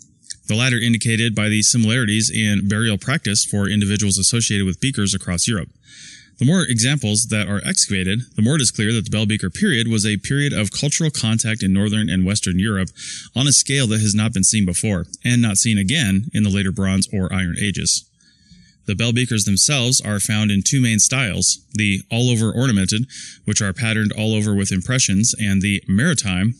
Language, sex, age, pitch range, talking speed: English, male, 20-39, 100-120 Hz, 195 wpm